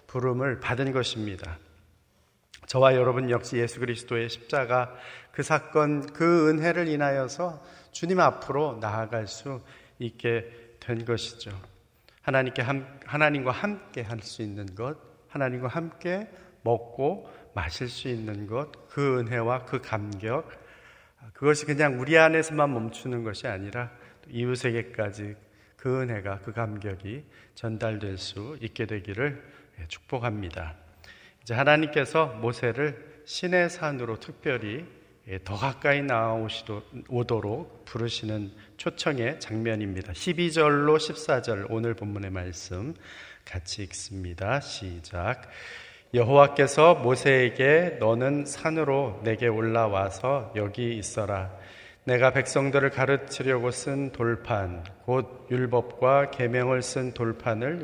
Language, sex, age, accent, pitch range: Korean, male, 40-59, native, 110-140 Hz